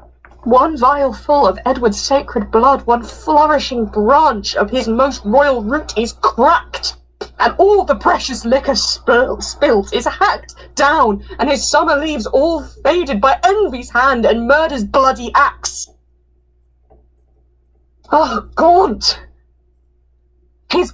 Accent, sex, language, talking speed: British, female, English, 125 wpm